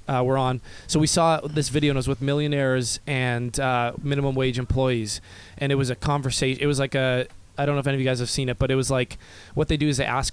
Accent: American